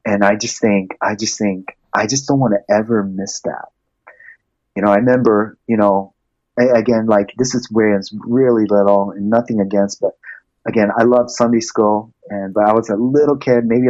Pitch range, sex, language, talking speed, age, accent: 100-130 Hz, male, English, 200 wpm, 30-49, American